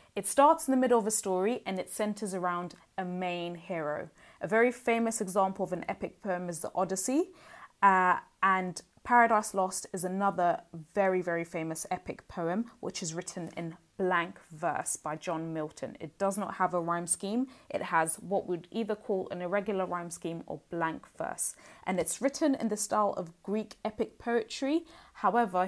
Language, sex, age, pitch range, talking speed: English, female, 20-39, 170-210 Hz, 180 wpm